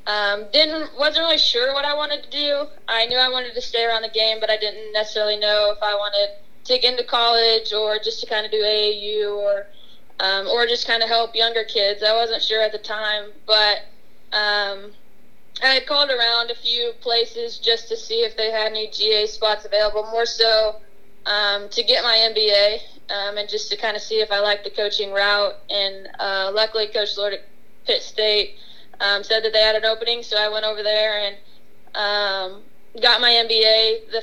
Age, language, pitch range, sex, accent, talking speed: 20-39, English, 205-230 Hz, female, American, 205 wpm